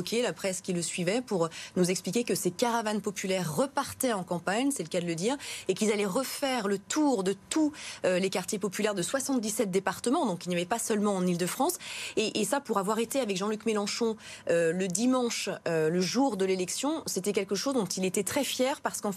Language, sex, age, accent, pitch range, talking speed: French, female, 20-39, French, 190-250 Hz, 220 wpm